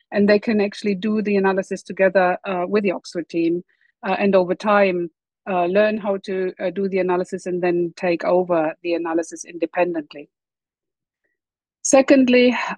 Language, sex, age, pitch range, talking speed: English, female, 50-69, 175-210 Hz, 155 wpm